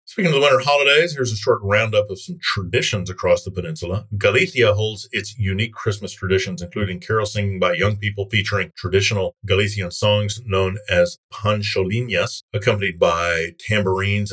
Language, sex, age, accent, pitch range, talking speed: English, male, 50-69, American, 95-115 Hz, 155 wpm